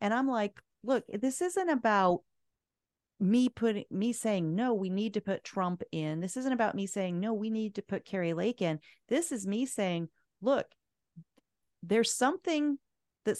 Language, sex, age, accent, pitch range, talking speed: English, female, 40-59, American, 165-215 Hz, 175 wpm